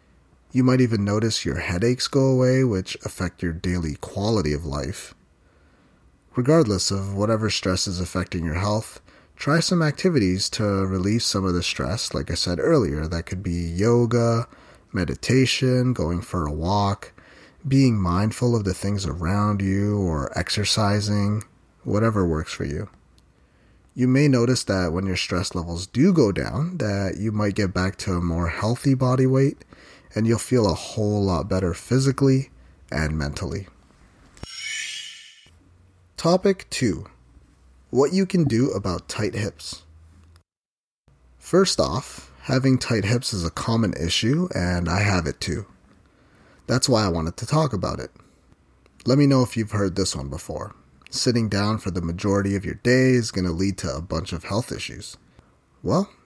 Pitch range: 85-120 Hz